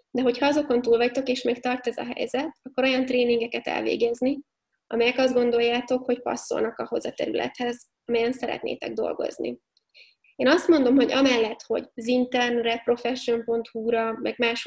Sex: female